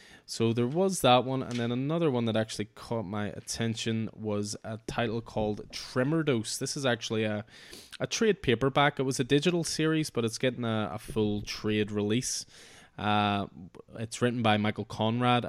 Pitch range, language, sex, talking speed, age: 105-125 Hz, English, male, 180 wpm, 20-39